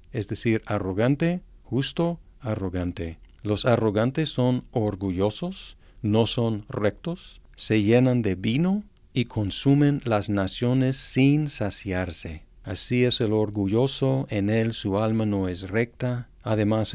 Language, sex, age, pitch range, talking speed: Spanish, male, 50-69, 100-125 Hz, 120 wpm